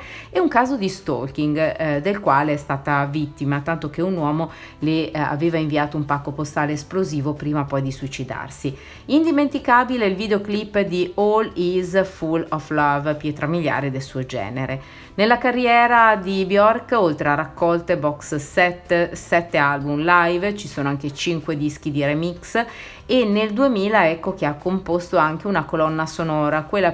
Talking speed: 160 wpm